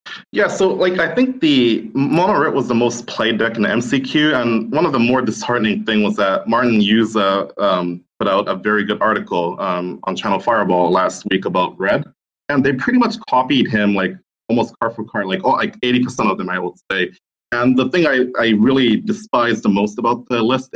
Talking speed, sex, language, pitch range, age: 215 wpm, male, English, 100-135 Hz, 20-39